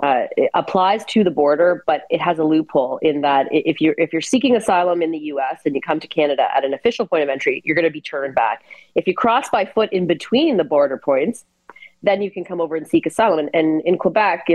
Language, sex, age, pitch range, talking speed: English, female, 30-49, 155-195 Hz, 250 wpm